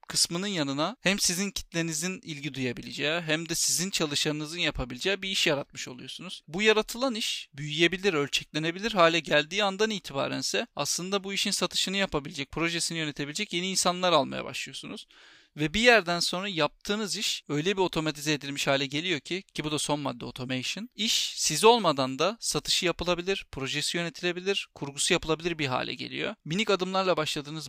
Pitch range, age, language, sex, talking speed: 150-185 Hz, 40-59, Turkish, male, 155 wpm